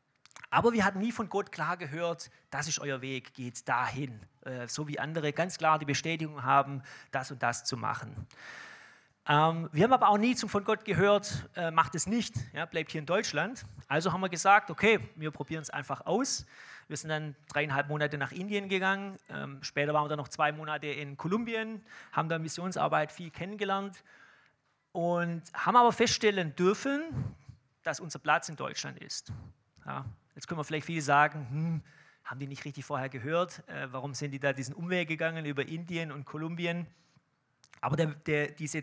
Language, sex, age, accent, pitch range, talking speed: German, male, 30-49, German, 145-180 Hz, 185 wpm